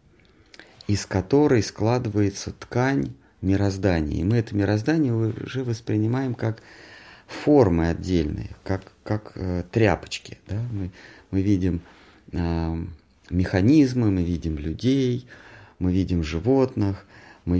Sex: male